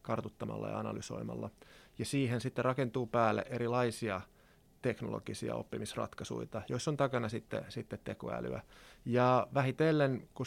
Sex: male